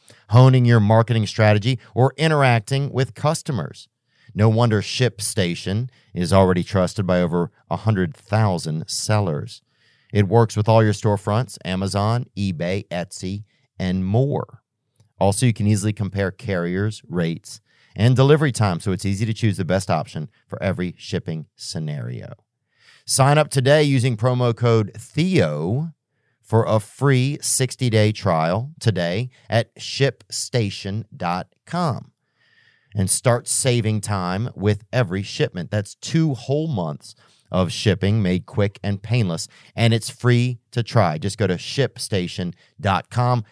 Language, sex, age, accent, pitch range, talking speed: English, male, 40-59, American, 100-130 Hz, 125 wpm